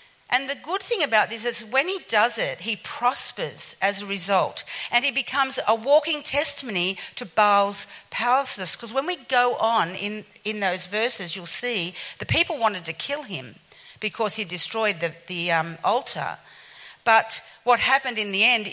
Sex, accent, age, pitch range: female, Australian, 50-69, 195-250 Hz